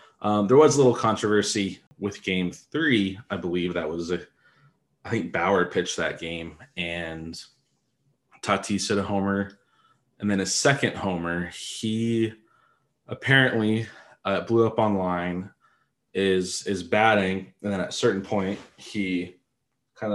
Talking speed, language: 140 wpm, English